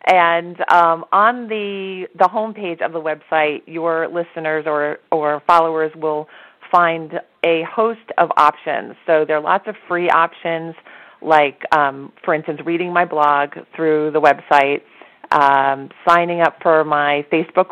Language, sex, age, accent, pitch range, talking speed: English, female, 30-49, American, 150-175 Hz, 145 wpm